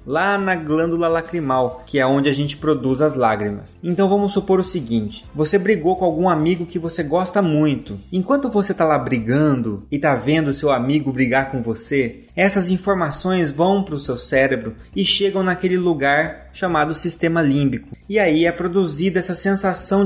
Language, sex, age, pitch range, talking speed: Portuguese, male, 20-39, 140-185 Hz, 175 wpm